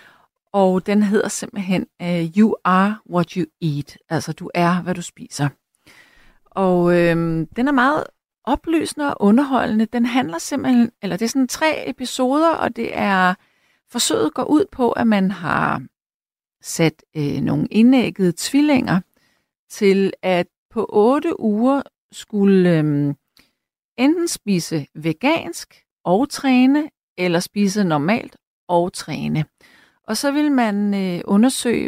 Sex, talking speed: female, 135 wpm